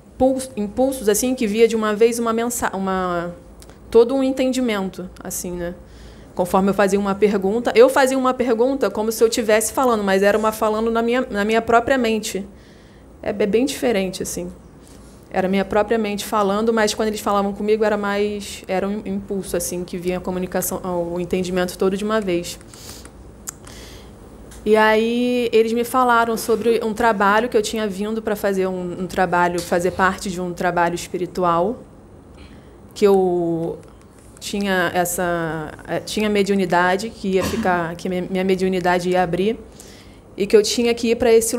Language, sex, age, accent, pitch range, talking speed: Portuguese, female, 20-39, Brazilian, 185-230 Hz, 165 wpm